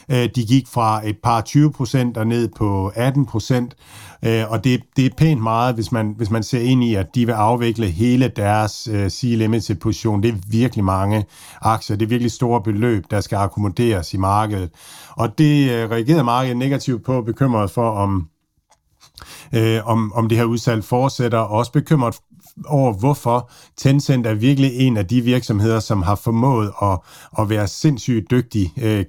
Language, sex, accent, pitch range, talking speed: Danish, male, native, 105-125 Hz, 175 wpm